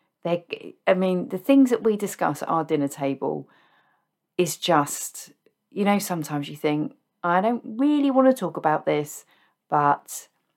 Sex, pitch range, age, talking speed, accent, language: female, 155-220 Hz, 40-59, 155 wpm, British, English